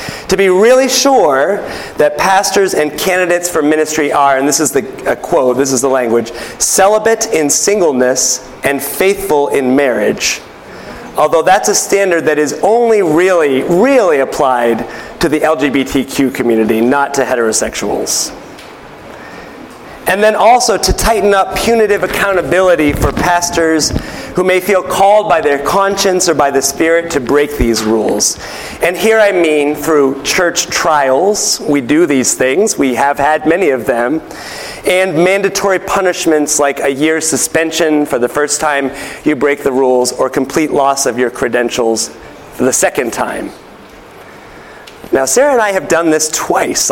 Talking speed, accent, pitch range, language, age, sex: 155 wpm, American, 140-190 Hz, English, 30-49, male